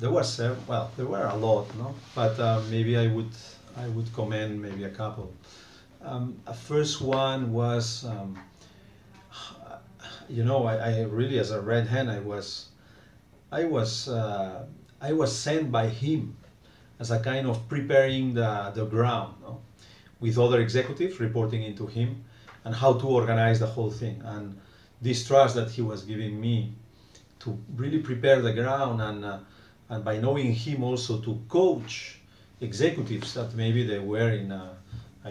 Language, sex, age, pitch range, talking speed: English, male, 40-59, 110-130 Hz, 165 wpm